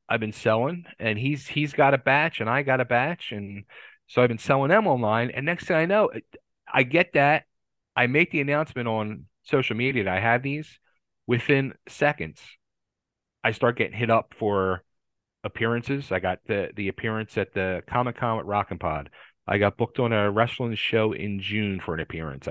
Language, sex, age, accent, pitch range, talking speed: English, male, 40-59, American, 105-135 Hz, 195 wpm